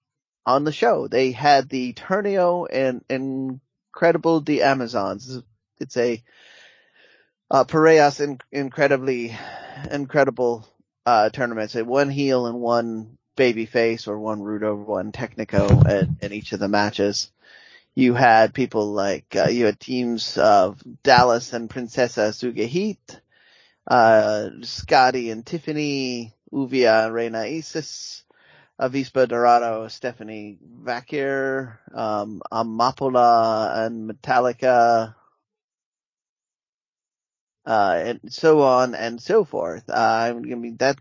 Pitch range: 115-140 Hz